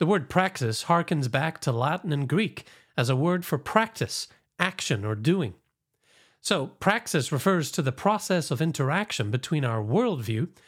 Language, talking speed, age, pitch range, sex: English, 155 wpm, 40-59, 130-180 Hz, male